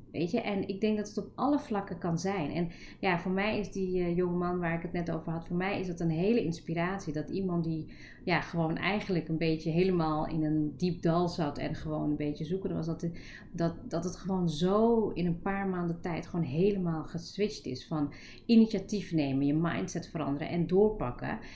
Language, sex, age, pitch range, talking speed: Dutch, female, 30-49, 155-195 Hz, 210 wpm